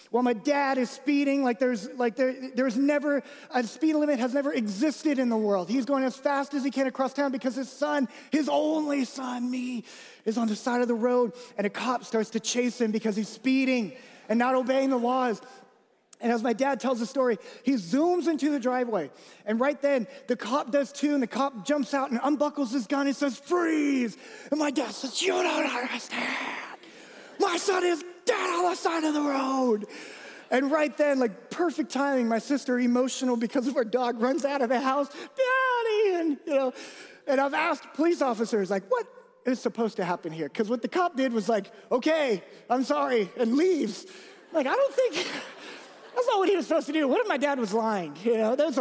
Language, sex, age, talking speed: English, male, 20-39, 215 wpm